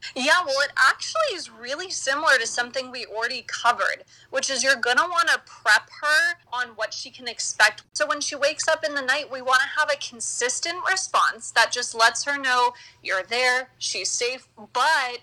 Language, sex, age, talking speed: English, female, 20-39, 200 wpm